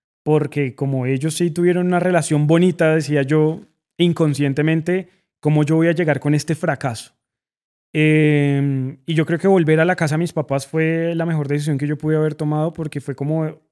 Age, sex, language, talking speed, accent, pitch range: 20-39, male, Spanish, 190 wpm, Colombian, 140-165 Hz